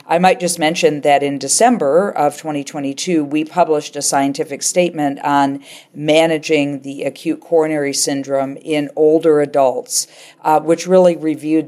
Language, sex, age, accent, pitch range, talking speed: English, female, 50-69, American, 135-160 Hz, 140 wpm